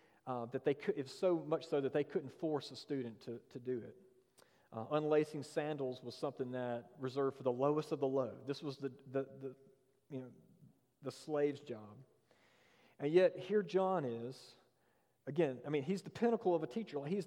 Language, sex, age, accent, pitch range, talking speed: English, male, 40-59, American, 135-195 Hz, 200 wpm